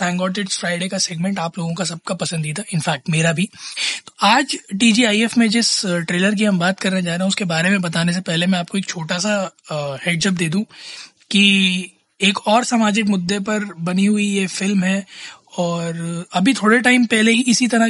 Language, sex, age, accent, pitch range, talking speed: Hindi, male, 20-39, native, 175-210 Hz, 145 wpm